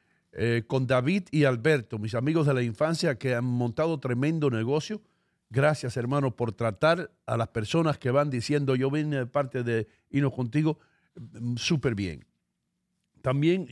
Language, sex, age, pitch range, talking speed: English, male, 50-69, 120-160 Hz, 160 wpm